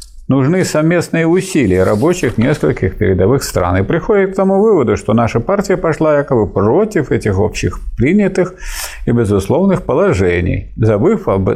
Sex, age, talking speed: male, 50-69, 135 wpm